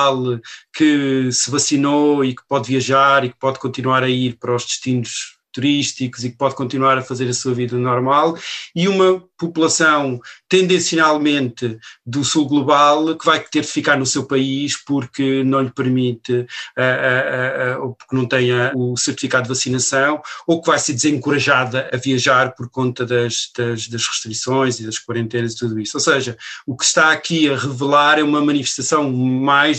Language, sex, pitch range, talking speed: Portuguese, male, 125-145 Hz, 175 wpm